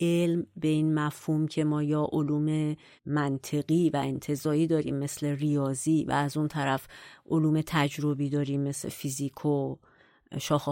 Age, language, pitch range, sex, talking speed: 40-59, Persian, 145-170 Hz, female, 140 wpm